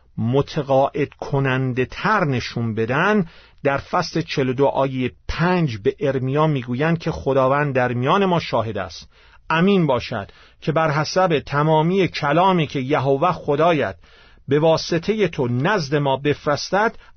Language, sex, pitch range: Persian, male, 120-180 Hz